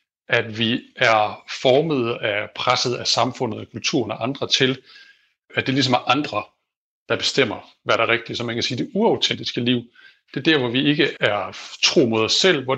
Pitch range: 115-140 Hz